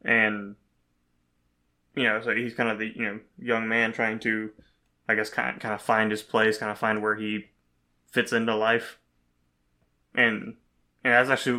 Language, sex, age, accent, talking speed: English, male, 20-39, American, 180 wpm